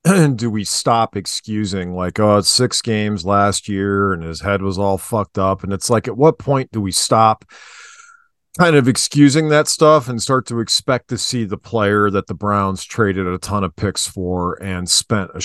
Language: English